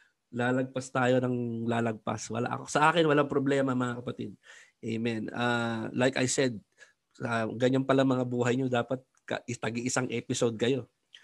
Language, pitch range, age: Filipino, 120-140 Hz, 20-39